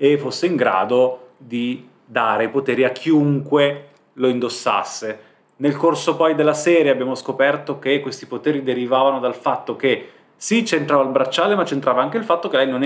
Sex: male